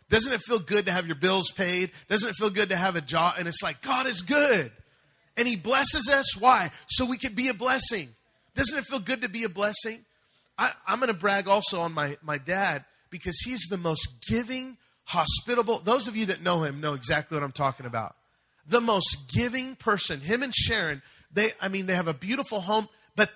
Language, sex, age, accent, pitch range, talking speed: English, male, 30-49, American, 155-220 Hz, 220 wpm